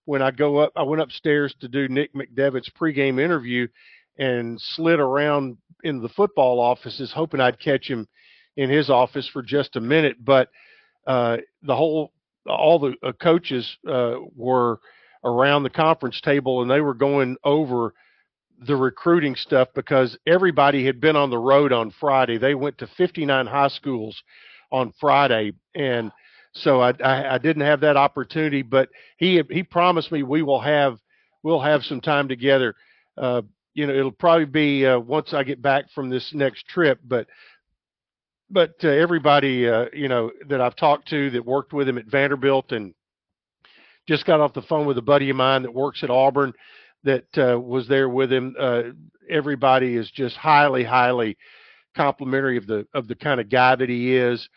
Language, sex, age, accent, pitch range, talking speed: English, male, 50-69, American, 125-145 Hz, 180 wpm